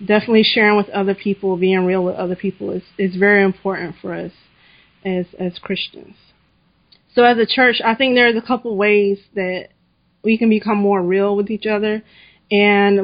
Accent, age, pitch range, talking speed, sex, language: American, 20-39, 195-215 Hz, 185 wpm, female, English